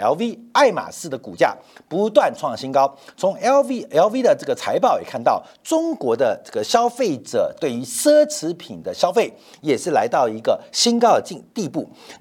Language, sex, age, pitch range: Chinese, male, 50-69, 195-320 Hz